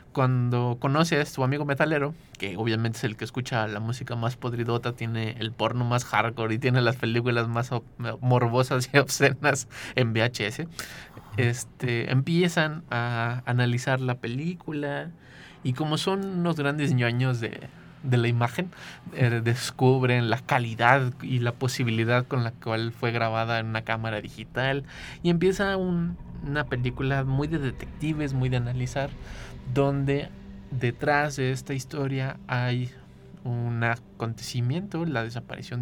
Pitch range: 115-140 Hz